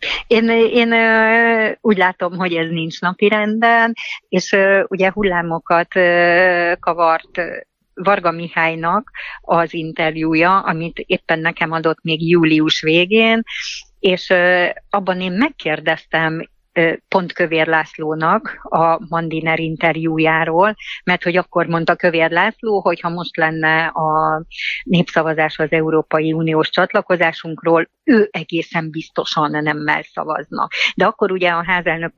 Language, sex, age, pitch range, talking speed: Hungarian, female, 50-69, 160-185 Hz, 110 wpm